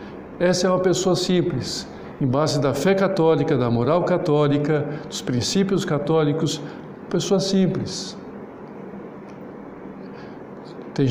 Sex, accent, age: male, Brazilian, 60-79